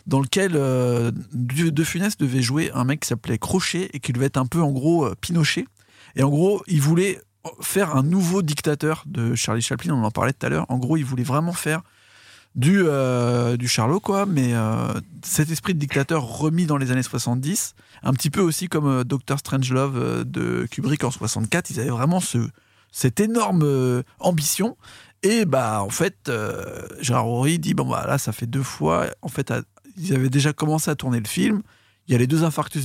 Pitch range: 125-165 Hz